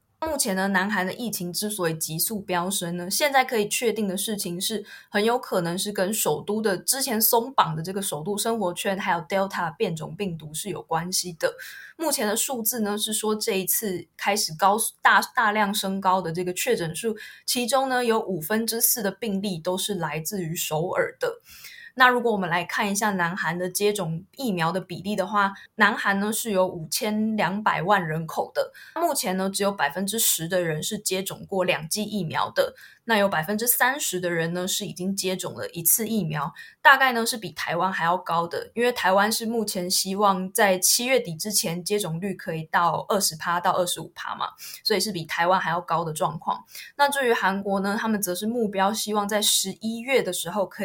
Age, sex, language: 20-39, female, Chinese